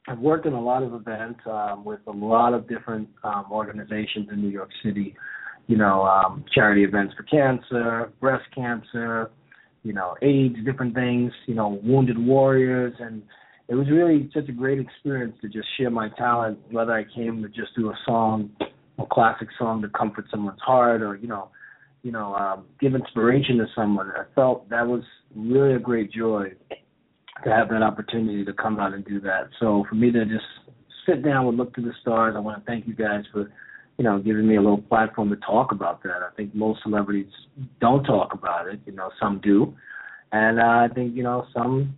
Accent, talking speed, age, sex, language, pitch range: American, 205 wpm, 30-49, male, English, 105-125 Hz